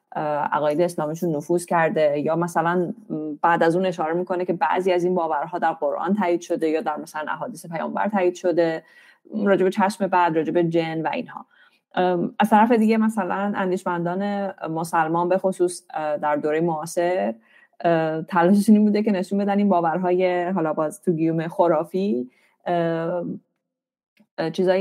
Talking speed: 145 wpm